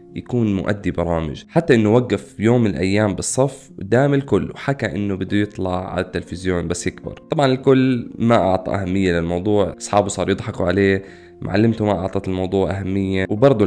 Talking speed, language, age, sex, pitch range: 155 wpm, Arabic, 20-39, male, 95-120 Hz